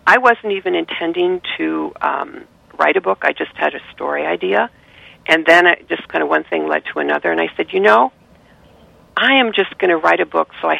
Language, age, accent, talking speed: English, 50-69, American, 220 wpm